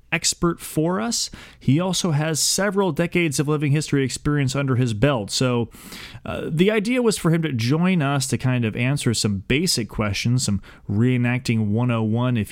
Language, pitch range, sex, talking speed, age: English, 110-135 Hz, male, 175 wpm, 30-49